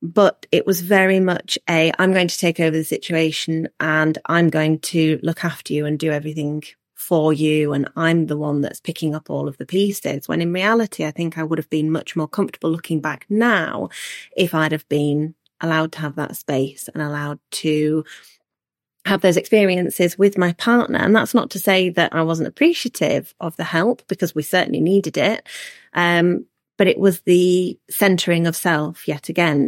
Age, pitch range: 30-49, 155-180 Hz